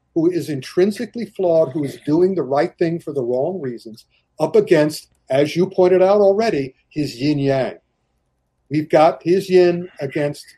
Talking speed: 160 wpm